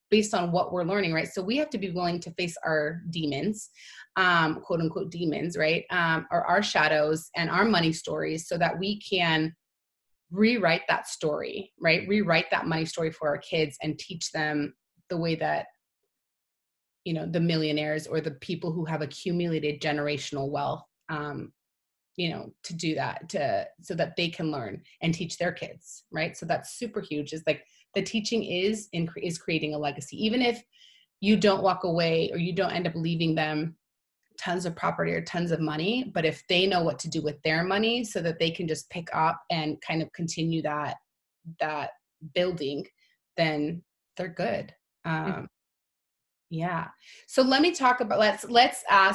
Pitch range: 155-190 Hz